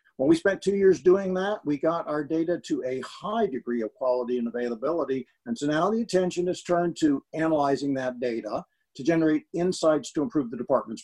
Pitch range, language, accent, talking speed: 135-180 Hz, English, American, 200 wpm